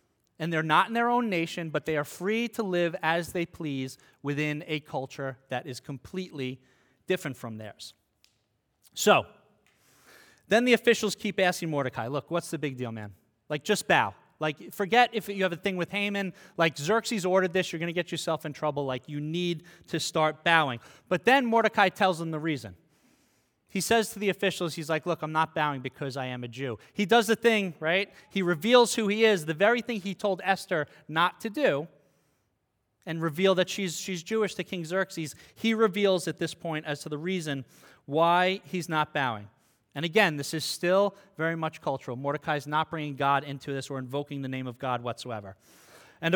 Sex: male